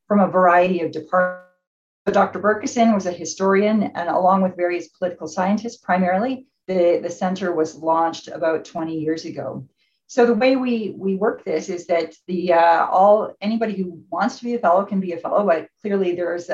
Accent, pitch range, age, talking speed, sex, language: American, 170-205 Hz, 40-59, 190 wpm, female, English